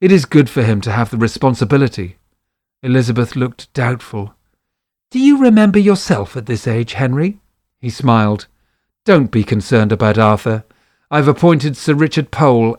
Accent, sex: British, male